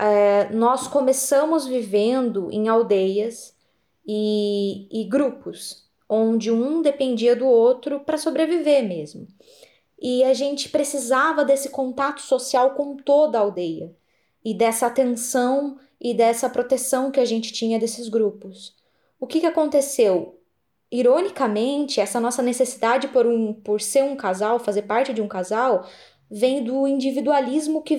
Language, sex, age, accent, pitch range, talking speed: Portuguese, female, 20-39, Brazilian, 220-280 Hz, 130 wpm